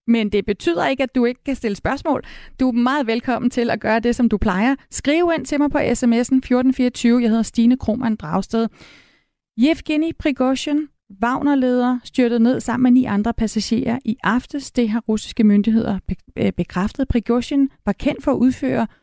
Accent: native